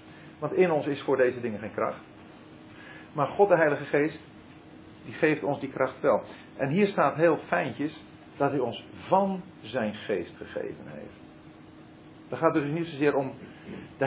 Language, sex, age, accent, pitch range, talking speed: French, male, 50-69, Dutch, 140-200 Hz, 170 wpm